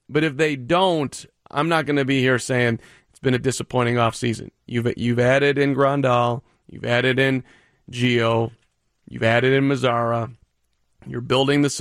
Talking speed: 160 wpm